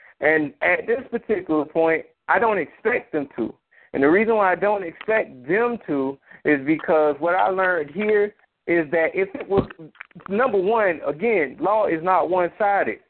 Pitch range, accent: 160-215 Hz, American